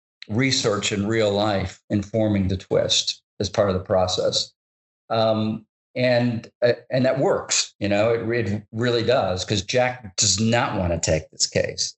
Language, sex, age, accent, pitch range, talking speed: English, male, 50-69, American, 95-110 Hz, 165 wpm